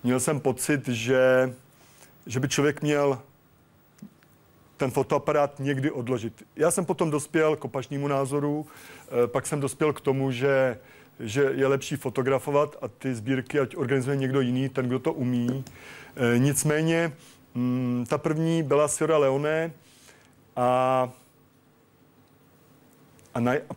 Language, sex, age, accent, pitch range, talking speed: Czech, male, 40-59, native, 130-150 Hz, 125 wpm